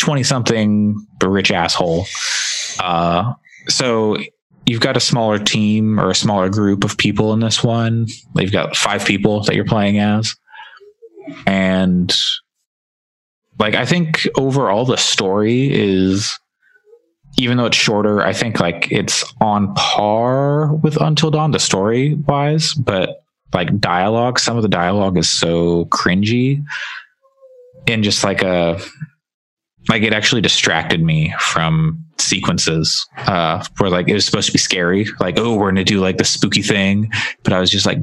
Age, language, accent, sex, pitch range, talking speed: 20-39, English, American, male, 95-135 Hz, 155 wpm